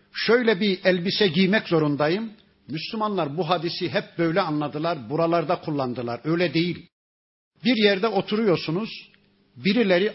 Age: 50-69